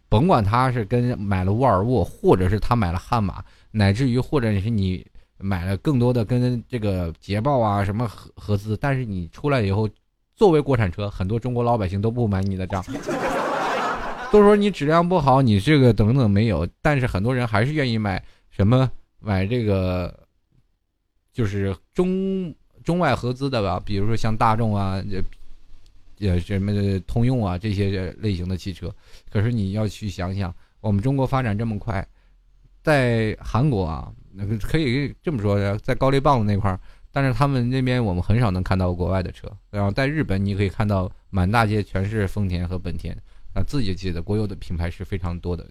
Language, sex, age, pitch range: Chinese, male, 20-39, 95-120 Hz